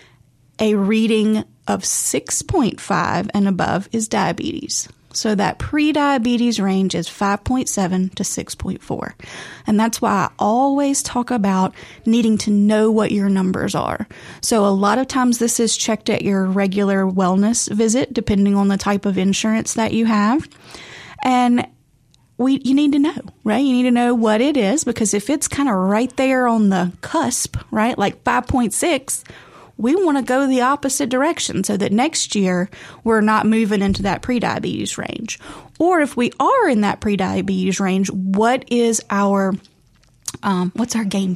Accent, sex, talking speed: American, female, 160 wpm